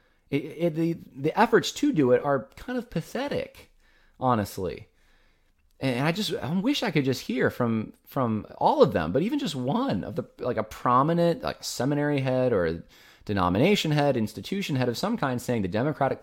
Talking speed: 190 wpm